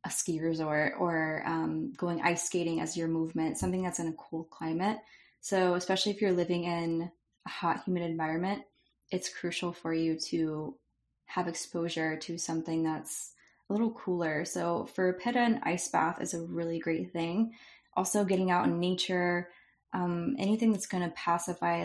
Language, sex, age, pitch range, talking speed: English, female, 20-39, 165-190 Hz, 175 wpm